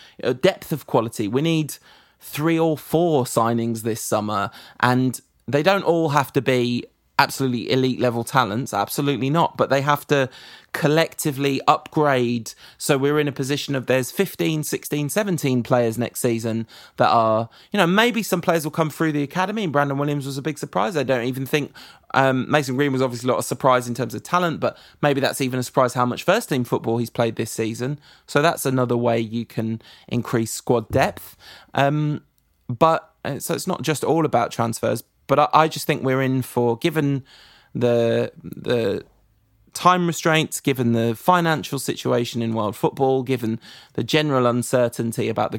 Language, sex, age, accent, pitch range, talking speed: English, male, 20-39, British, 120-145 Hz, 180 wpm